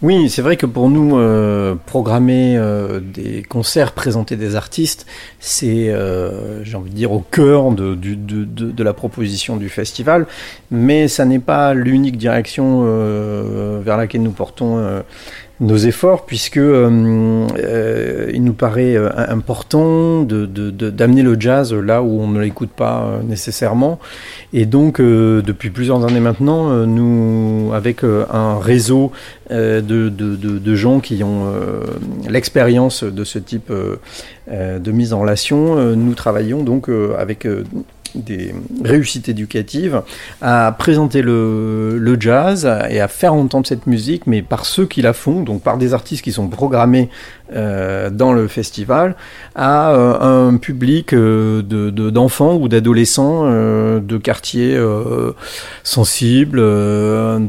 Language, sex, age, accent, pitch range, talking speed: French, male, 40-59, French, 105-130 Hz, 155 wpm